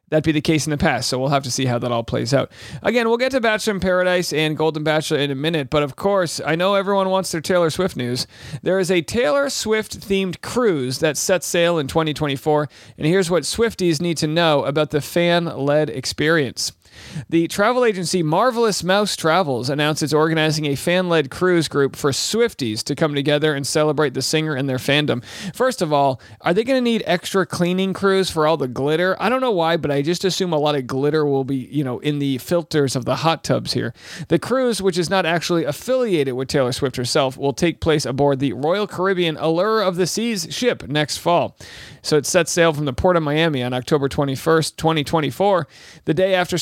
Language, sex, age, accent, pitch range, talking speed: English, male, 40-59, American, 145-185 Hz, 215 wpm